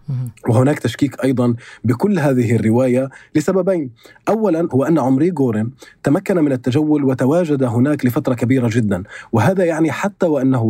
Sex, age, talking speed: male, 30-49, 135 wpm